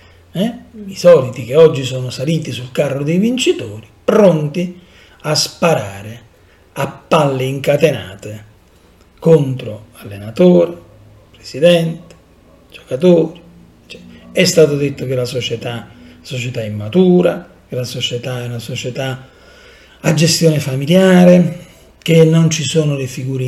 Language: Italian